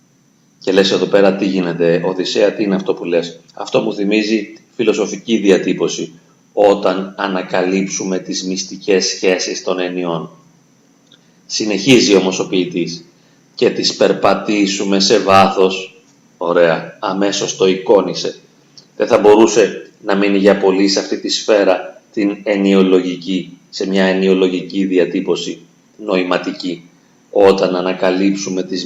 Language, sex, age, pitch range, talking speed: Greek, male, 30-49, 90-100 Hz, 115 wpm